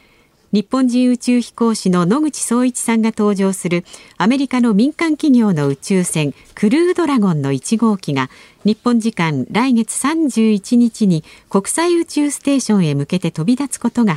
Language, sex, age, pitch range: Japanese, female, 50-69, 170-255 Hz